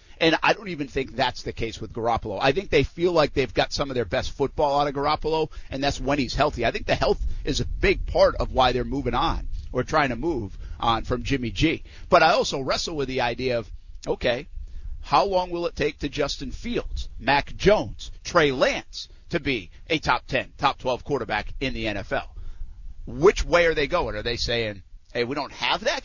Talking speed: 220 wpm